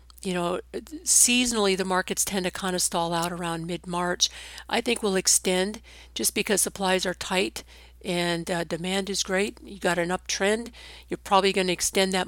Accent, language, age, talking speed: American, English, 50-69, 180 wpm